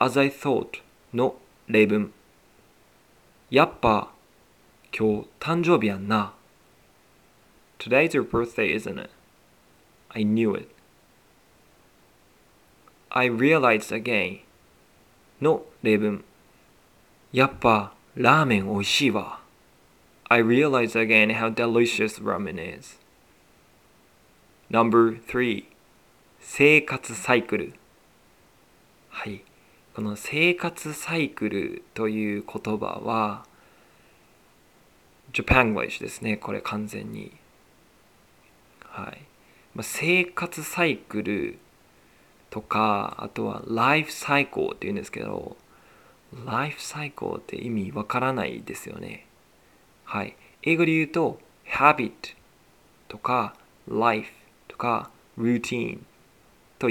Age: 20-39